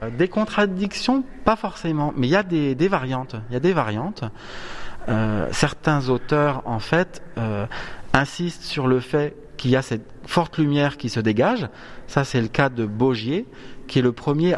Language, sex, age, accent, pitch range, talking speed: French, male, 30-49, French, 110-145 Hz, 185 wpm